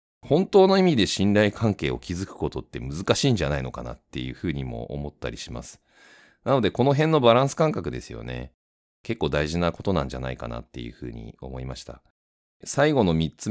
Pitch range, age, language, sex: 65-115 Hz, 30-49, Japanese, male